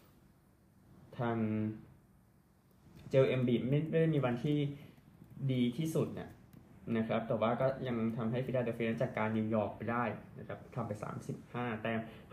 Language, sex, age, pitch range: Thai, male, 20-39, 110-135 Hz